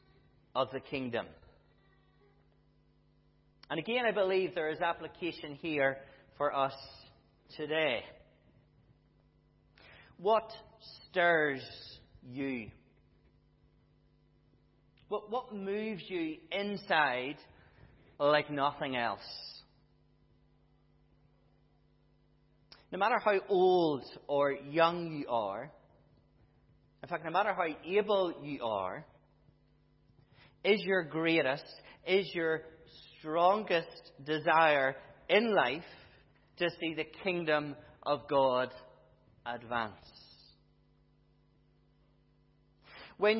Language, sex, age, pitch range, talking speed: English, male, 40-59, 135-185 Hz, 80 wpm